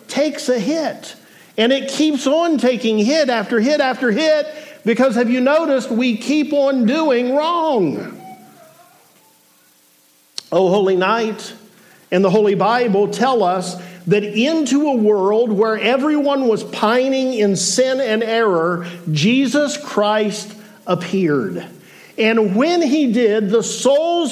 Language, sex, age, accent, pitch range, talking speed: English, male, 50-69, American, 190-255 Hz, 130 wpm